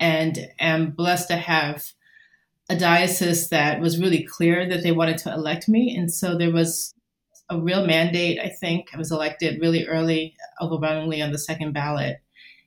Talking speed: 170 wpm